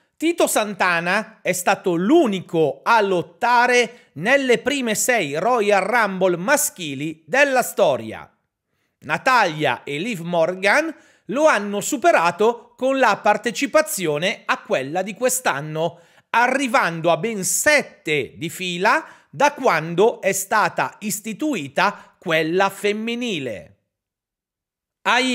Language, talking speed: Italian, 100 wpm